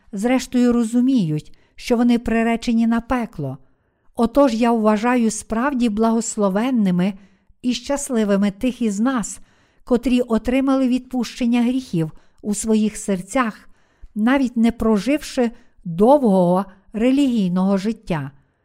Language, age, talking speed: Ukrainian, 50-69, 95 wpm